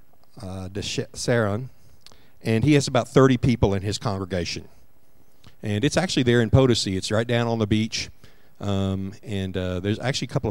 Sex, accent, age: male, American, 50-69